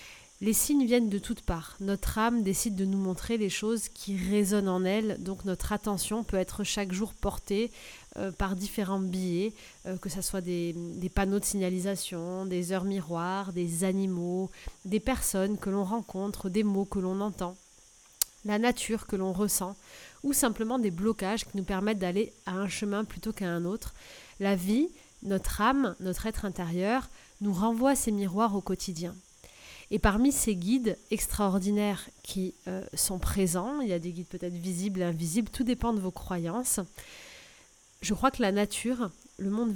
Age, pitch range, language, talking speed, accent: 30-49, 185-220 Hz, French, 180 wpm, French